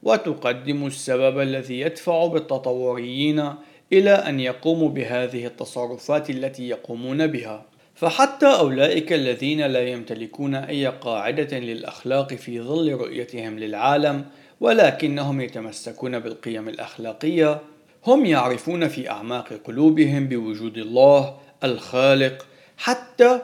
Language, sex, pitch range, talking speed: Arabic, male, 120-155 Hz, 95 wpm